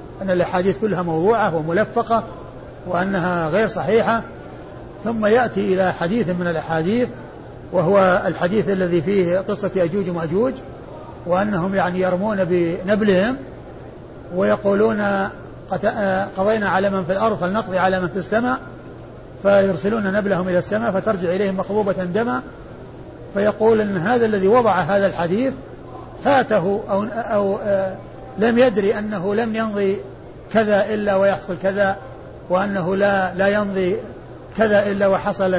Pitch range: 185-220 Hz